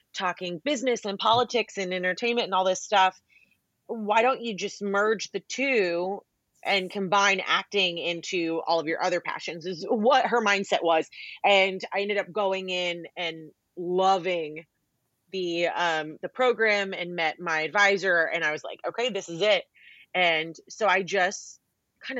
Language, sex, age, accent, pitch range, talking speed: English, female, 30-49, American, 170-205 Hz, 160 wpm